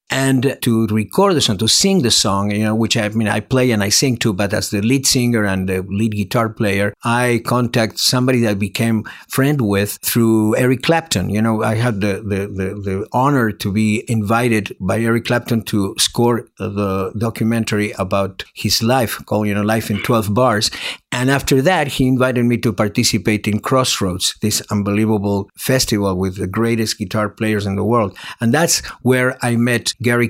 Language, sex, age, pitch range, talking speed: English, male, 50-69, 105-125 Hz, 190 wpm